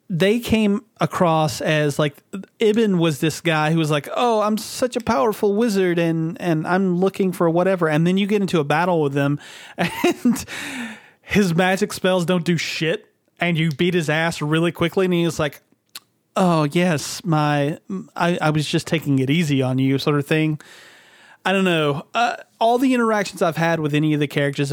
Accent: American